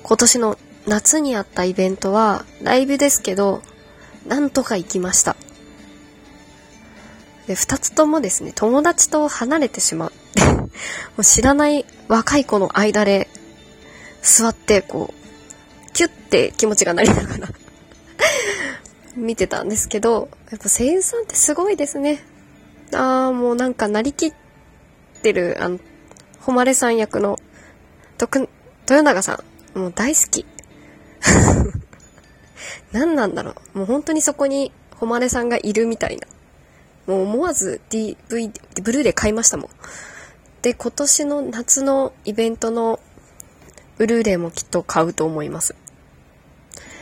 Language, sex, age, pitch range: Japanese, female, 20-39, 200-270 Hz